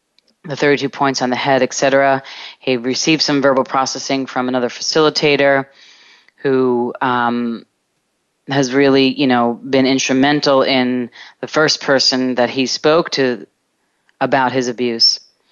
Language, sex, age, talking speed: English, female, 30-49, 135 wpm